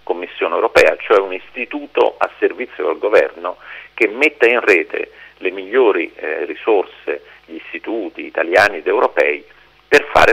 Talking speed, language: 140 wpm, Italian